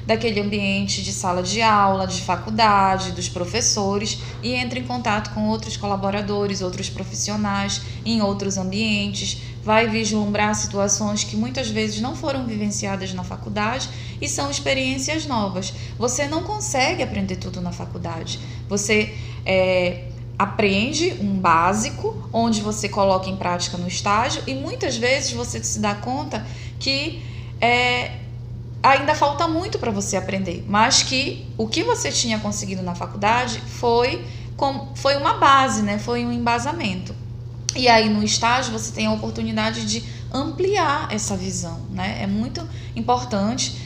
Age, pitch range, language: 20-39, 110-180 Hz, Portuguese